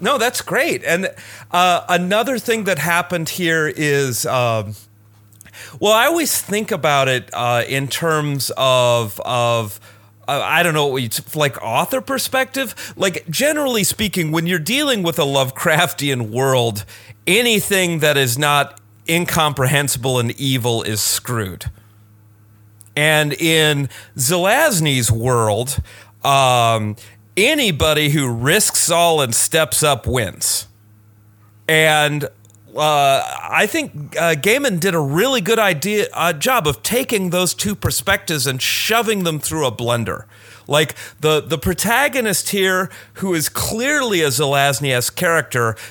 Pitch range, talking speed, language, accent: 115-175 Hz, 125 wpm, English, American